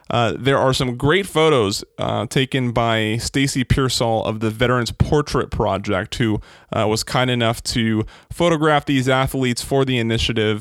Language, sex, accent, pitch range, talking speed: English, male, American, 115-155 Hz, 160 wpm